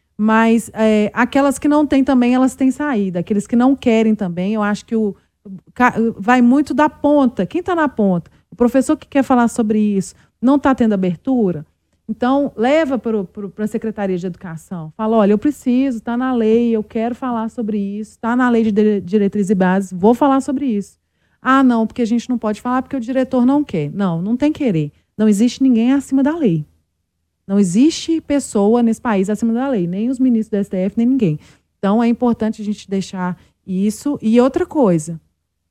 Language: Portuguese